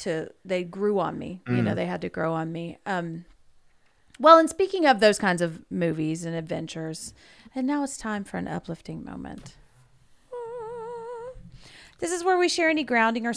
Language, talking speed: English, 180 wpm